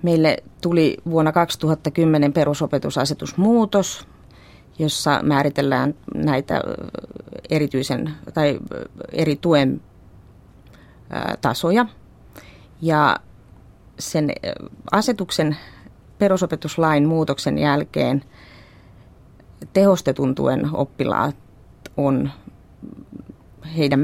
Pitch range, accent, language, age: 130-160 Hz, native, Finnish, 30-49